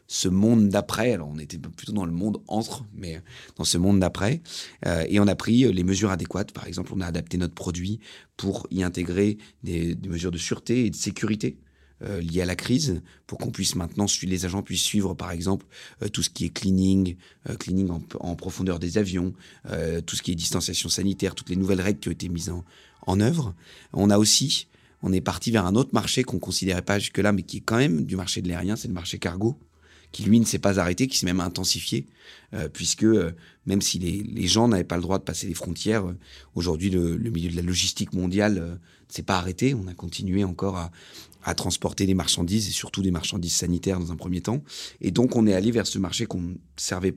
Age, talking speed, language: 30-49, 235 wpm, French